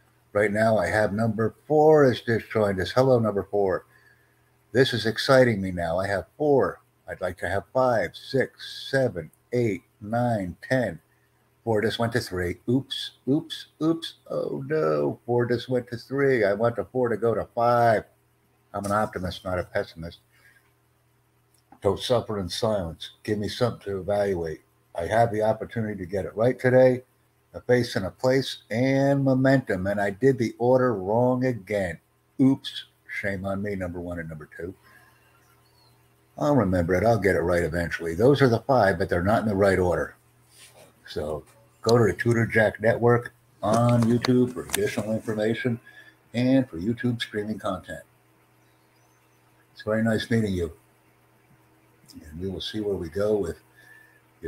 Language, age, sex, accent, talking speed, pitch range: English, 60-79, male, American, 165 wpm, 100-125 Hz